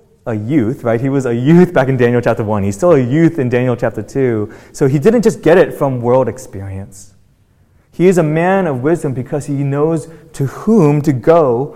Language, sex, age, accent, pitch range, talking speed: English, male, 30-49, American, 110-140 Hz, 215 wpm